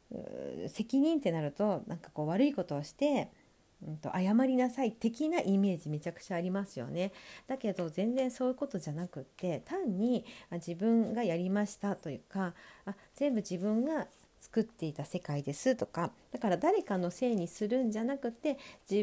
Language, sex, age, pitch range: Japanese, female, 50-69, 170-235 Hz